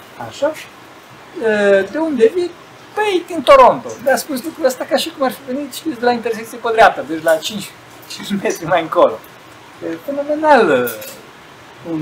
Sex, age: male, 50-69